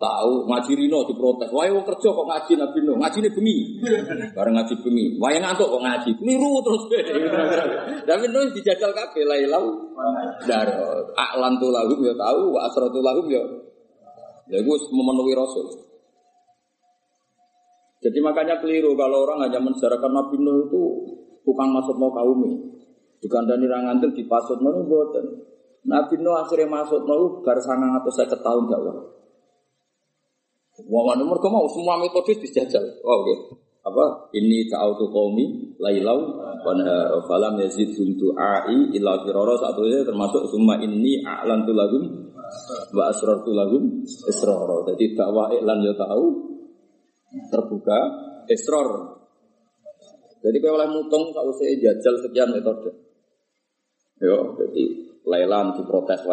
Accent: native